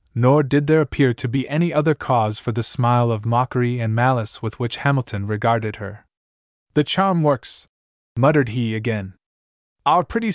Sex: male